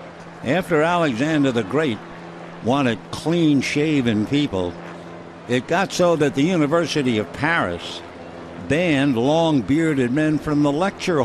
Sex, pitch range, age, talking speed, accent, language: male, 110-155 Hz, 60-79, 110 wpm, American, English